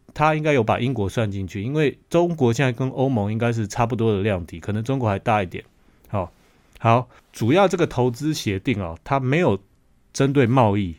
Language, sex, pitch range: Chinese, male, 100-130 Hz